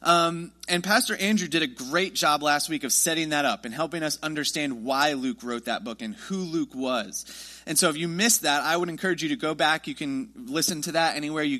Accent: American